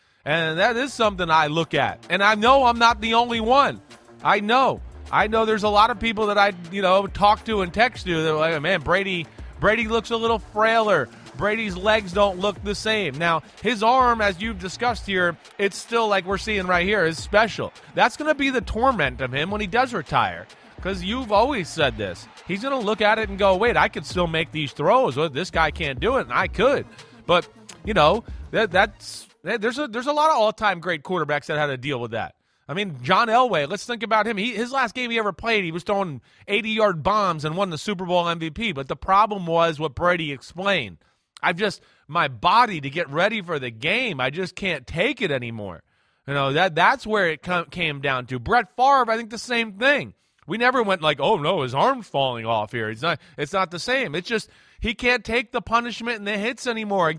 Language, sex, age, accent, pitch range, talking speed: English, male, 30-49, American, 165-225 Hz, 235 wpm